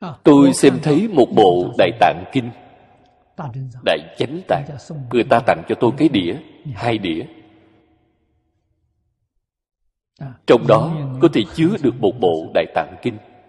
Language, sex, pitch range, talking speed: Vietnamese, male, 125-170 Hz, 140 wpm